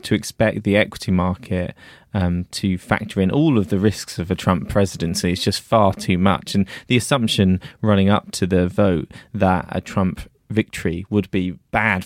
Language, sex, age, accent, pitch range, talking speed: English, male, 20-39, British, 95-115 Hz, 185 wpm